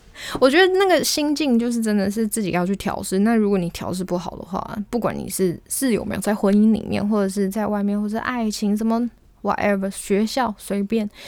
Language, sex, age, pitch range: Chinese, female, 20-39, 185-235 Hz